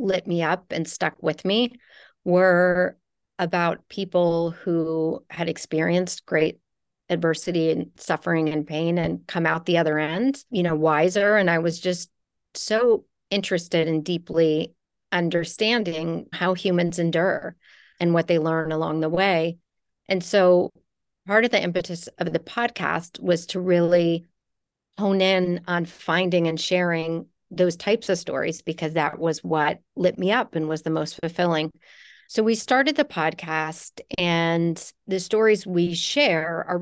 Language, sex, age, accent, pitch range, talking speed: English, female, 40-59, American, 160-185 Hz, 150 wpm